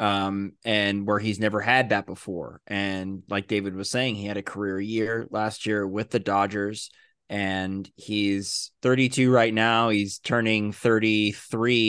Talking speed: 155 wpm